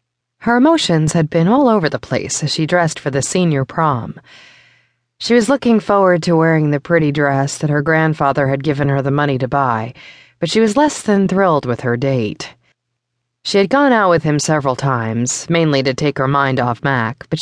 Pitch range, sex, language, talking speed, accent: 130-165 Hz, female, English, 205 wpm, American